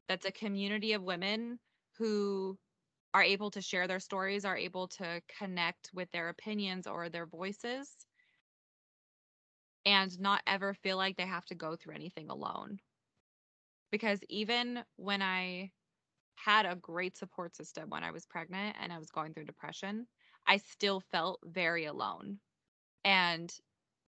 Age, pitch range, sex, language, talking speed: 20-39, 170-205 Hz, female, English, 145 wpm